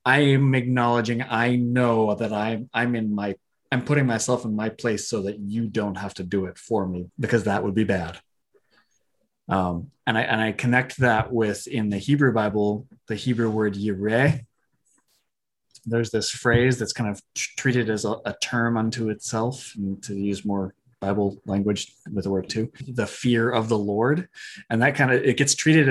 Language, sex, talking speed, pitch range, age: English, male, 190 wpm, 105-130 Hz, 30-49